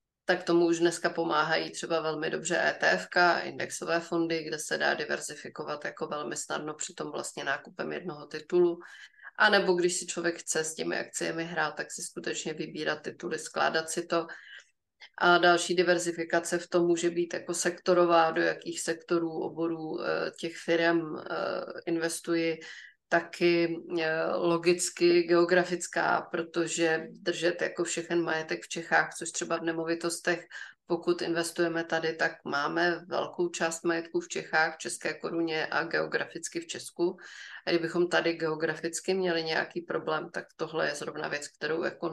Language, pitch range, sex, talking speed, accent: Czech, 165-175 Hz, female, 145 wpm, native